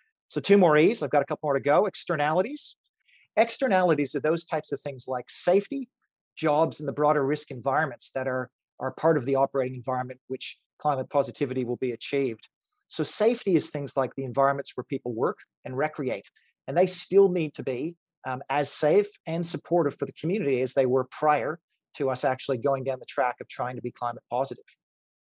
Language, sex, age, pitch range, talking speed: English, male, 40-59, 130-155 Hz, 195 wpm